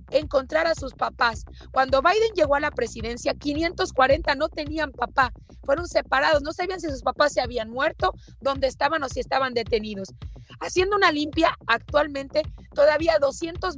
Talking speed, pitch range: 155 wpm, 255-320 Hz